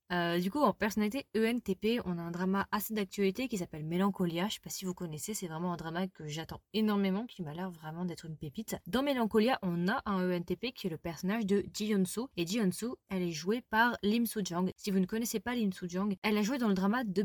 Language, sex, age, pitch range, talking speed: French, female, 20-39, 180-220 Hz, 255 wpm